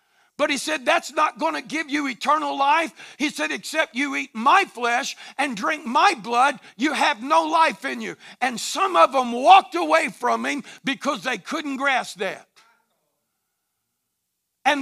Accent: American